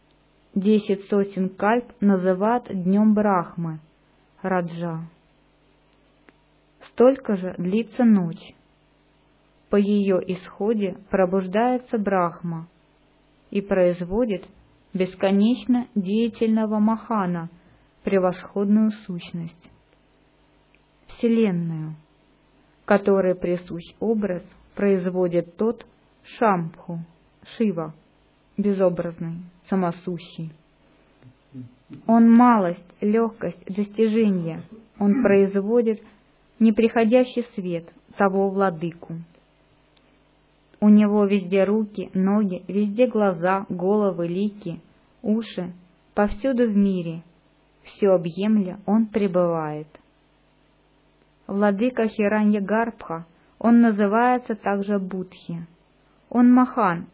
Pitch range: 175-215 Hz